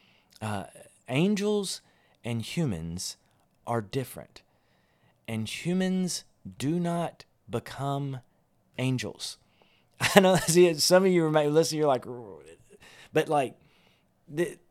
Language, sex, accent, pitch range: English, male, American, 125-165 Hz